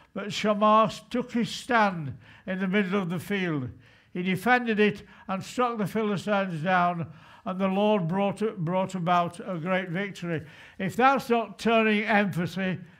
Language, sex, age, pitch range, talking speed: English, male, 60-79, 180-230 Hz, 155 wpm